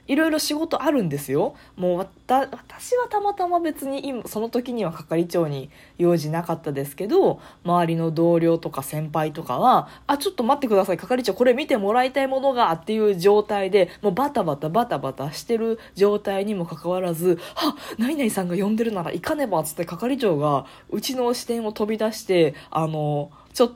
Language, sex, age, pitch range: Japanese, female, 20-39, 160-235 Hz